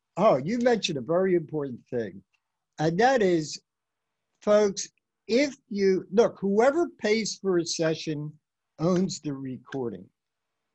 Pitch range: 135-200 Hz